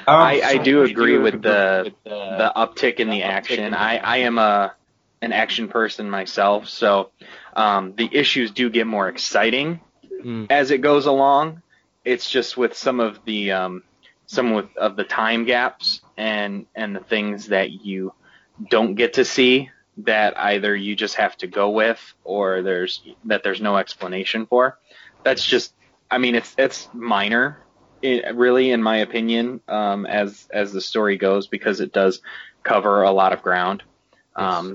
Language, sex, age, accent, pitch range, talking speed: English, male, 20-39, American, 100-120 Hz, 165 wpm